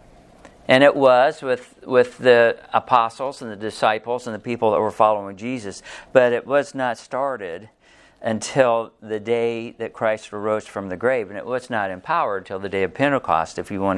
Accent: American